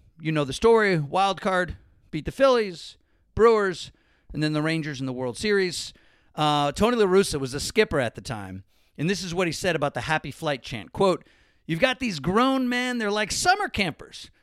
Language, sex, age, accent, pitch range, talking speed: English, male, 40-59, American, 140-200 Hz, 200 wpm